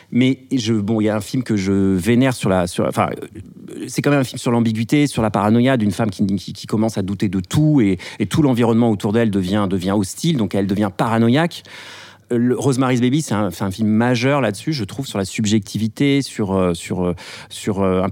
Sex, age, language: male, 40-59, French